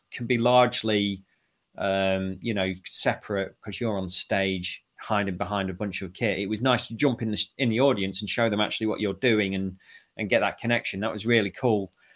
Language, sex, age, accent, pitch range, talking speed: English, male, 30-49, British, 105-130 Hz, 210 wpm